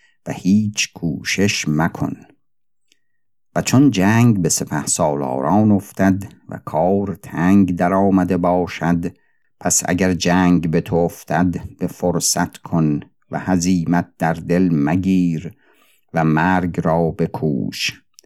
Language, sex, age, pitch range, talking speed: Persian, male, 50-69, 85-100 Hz, 115 wpm